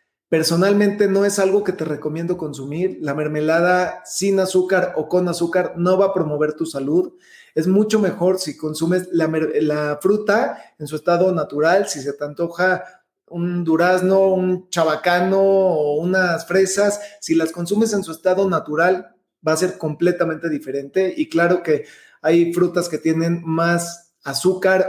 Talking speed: 155 wpm